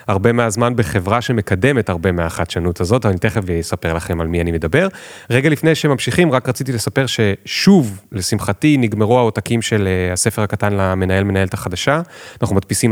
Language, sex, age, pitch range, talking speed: Hebrew, male, 30-49, 95-125 Hz, 150 wpm